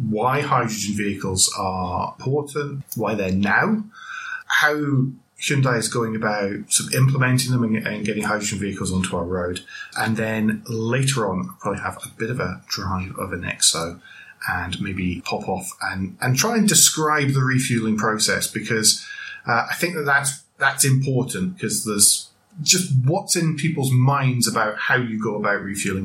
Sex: male